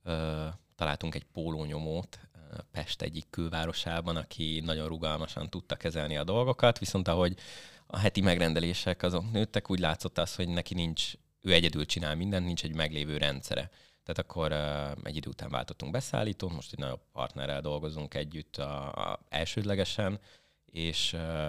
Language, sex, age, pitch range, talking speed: Hungarian, male, 30-49, 75-95 Hz, 150 wpm